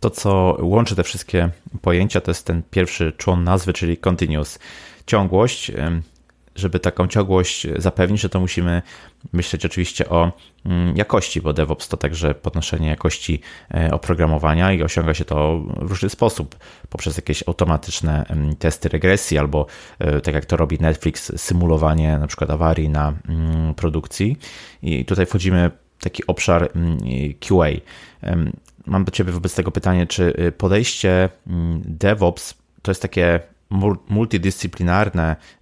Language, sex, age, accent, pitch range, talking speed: Polish, male, 30-49, native, 80-95 Hz, 130 wpm